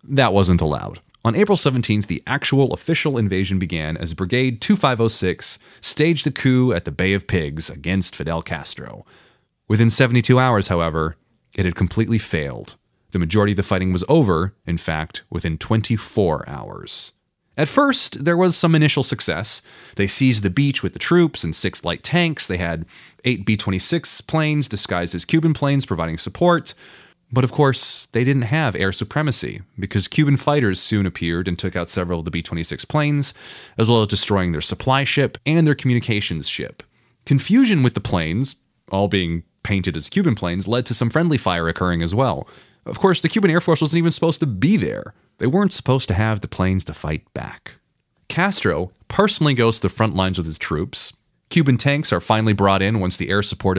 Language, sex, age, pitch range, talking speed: English, male, 30-49, 90-140 Hz, 185 wpm